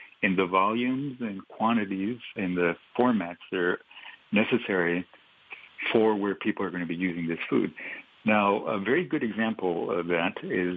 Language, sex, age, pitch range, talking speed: English, male, 60-79, 90-105 Hz, 160 wpm